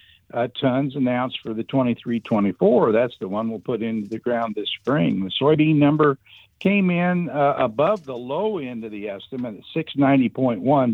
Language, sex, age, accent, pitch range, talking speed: English, male, 60-79, American, 105-130 Hz, 170 wpm